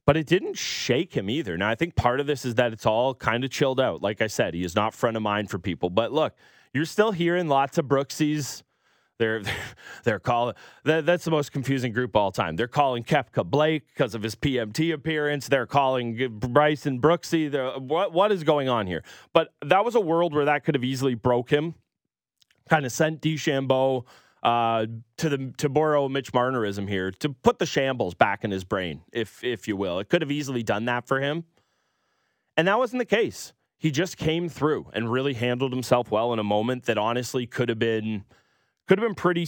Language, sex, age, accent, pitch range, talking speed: English, male, 30-49, American, 105-145 Hz, 215 wpm